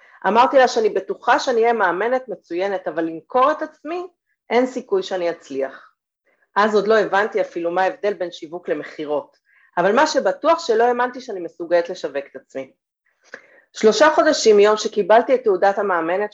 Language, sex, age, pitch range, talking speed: Hebrew, female, 40-59, 180-245 Hz, 160 wpm